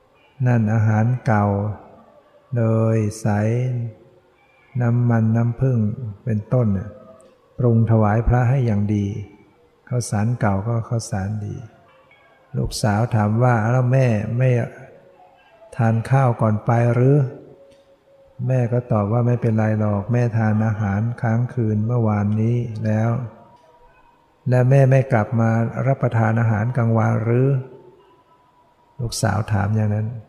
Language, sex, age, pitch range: English, male, 60-79, 110-125 Hz